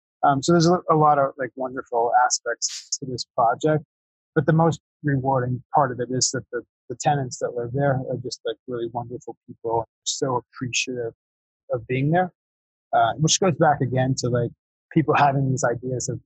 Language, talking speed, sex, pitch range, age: English, 185 wpm, male, 120-150 Hz, 30-49